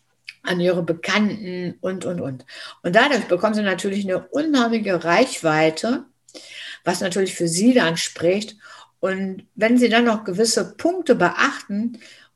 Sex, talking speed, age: female, 135 wpm, 60-79